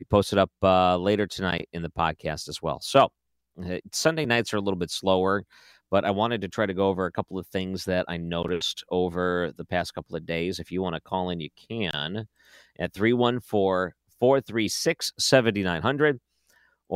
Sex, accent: male, American